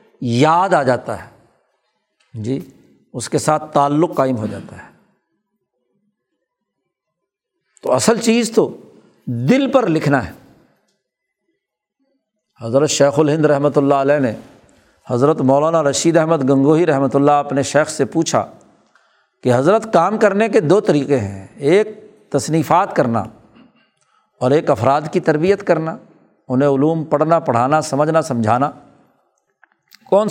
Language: Urdu